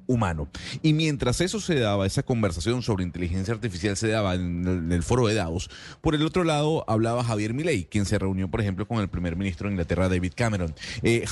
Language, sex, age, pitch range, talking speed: Spanish, male, 30-49, 95-125 Hz, 215 wpm